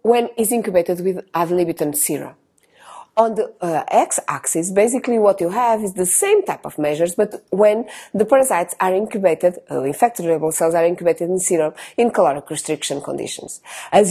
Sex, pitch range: female, 175-270 Hz